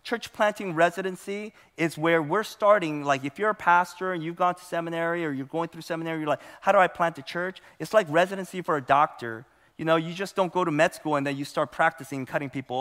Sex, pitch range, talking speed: male, 140-180 Hz, 250 wpm